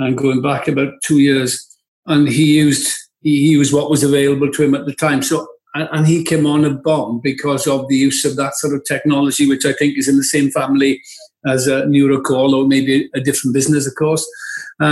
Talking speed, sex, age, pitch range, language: 210 wpm, male, 50-69, 135-155 Hz, English